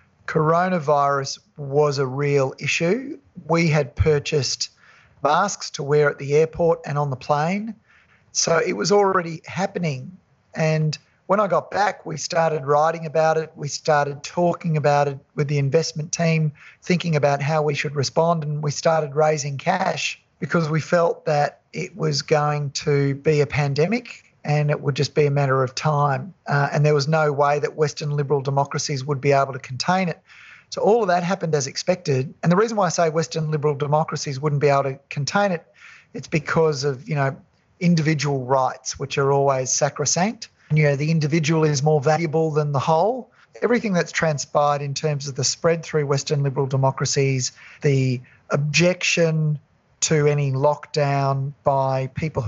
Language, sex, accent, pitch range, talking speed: English, male, Australian, 140-165 Hz, 175 wpm